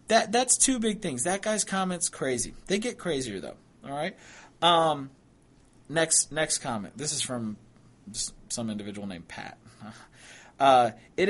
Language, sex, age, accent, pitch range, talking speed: English, male, 30-49, American, 125-180 Hz, 150 wpm